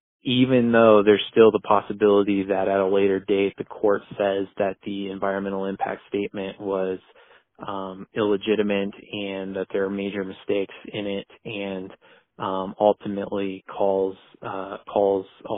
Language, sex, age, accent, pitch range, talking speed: English, male, 20-39, American, 95-105 Hz, 145 wpm